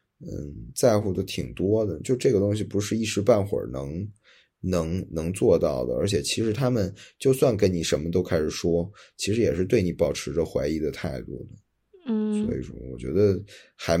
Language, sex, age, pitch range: Chinese, male, 20-39, 85-100 Hz